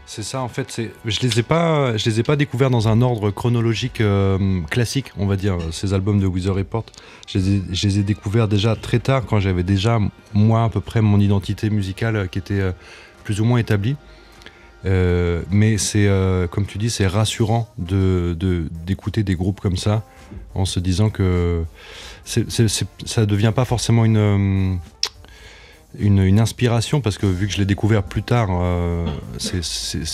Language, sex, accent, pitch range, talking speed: French, male, French, 95-115 Hz, 190 wpm